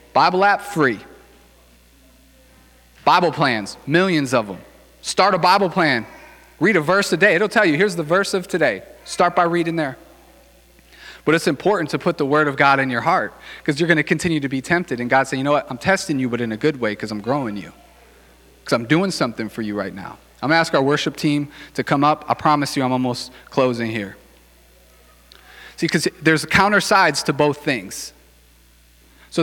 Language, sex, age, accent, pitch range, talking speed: English, male, 40-59, American, 115-175 Hz, 205 wpm